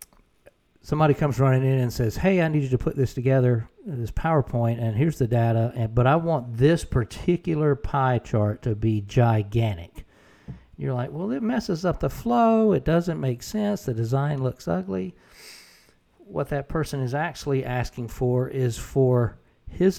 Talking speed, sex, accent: 170 wpm, male, American